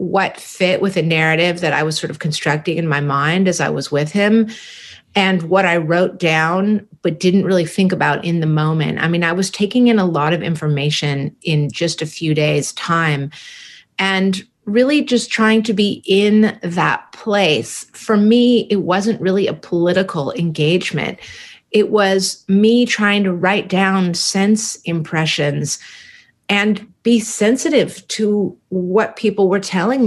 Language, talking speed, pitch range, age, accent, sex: English, 165 wpm, 160-205 Hz, 30-49, American, female